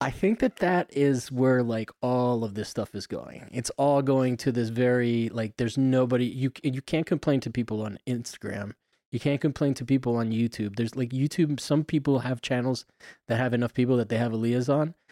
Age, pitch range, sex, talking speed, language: 20-39, 115-135 Hz, male, 210 wpm, English